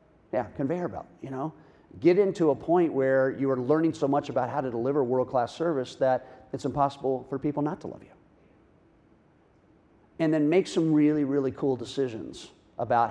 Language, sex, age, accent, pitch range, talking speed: English, male, 50-69, American, 120-145 Hz, 180 wpm